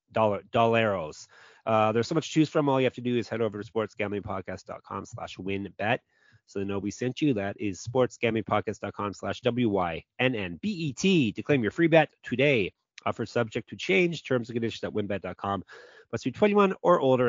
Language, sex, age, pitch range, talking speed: English, male, 30-49, 105-135 Hz, 190 wpm